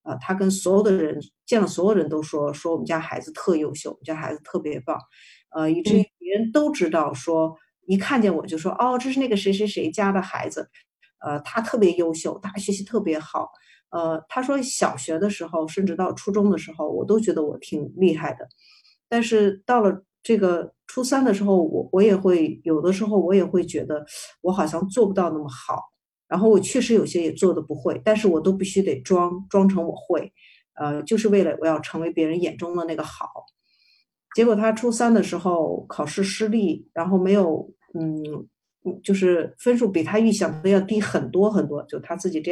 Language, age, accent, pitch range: Chinese, 50-69, native, 165-210 Hz